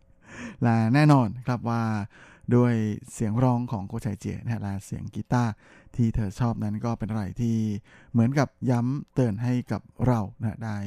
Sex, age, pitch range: male, 20-39, 110-125 Hz